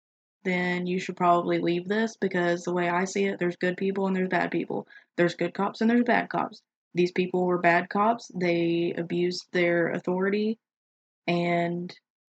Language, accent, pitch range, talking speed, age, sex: English, American, 175-200 Hz, 175 wpm, 20-39, female